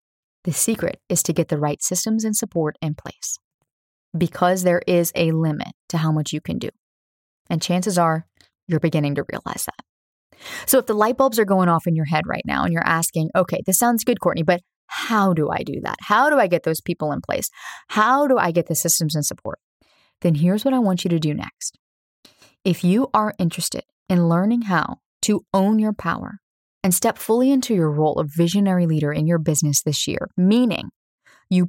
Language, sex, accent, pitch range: English, female, American, 160-195 Hz